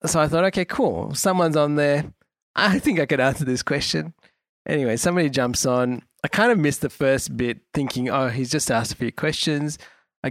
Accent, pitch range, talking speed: Australian, 120-155 Hz, 205 wpm